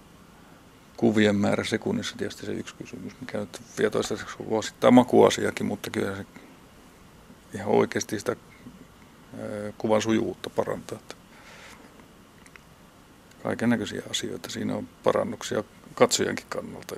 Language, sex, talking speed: Finnish, male, 105 wpm